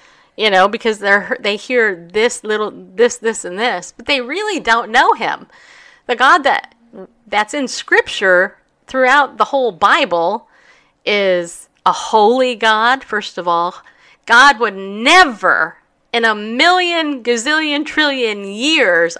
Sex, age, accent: female, 40-59, American